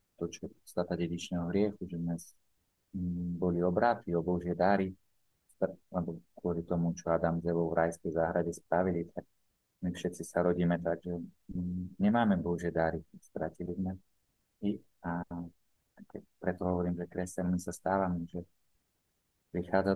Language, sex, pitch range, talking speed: Slovak, male, 85-95 Hz, 125 wpm